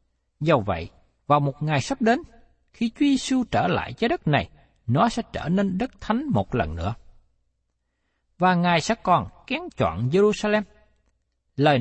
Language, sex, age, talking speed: Vietnamese, male, 60-79, 160 wpm